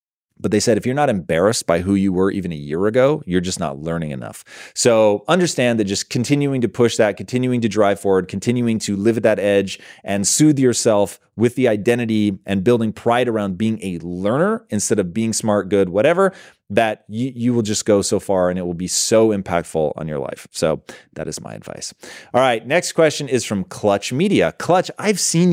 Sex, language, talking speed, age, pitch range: male, English, 210 wpm, 30-49, 95-120 Hz